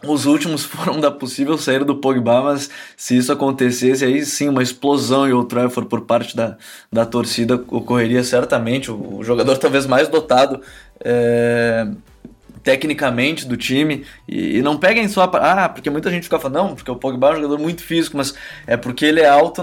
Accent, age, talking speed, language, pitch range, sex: Brazilian, 20-39, 185 wpm, Portuguese, 125-150 Hz, male